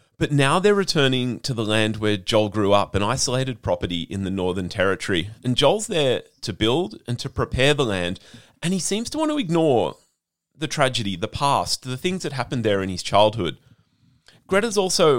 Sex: male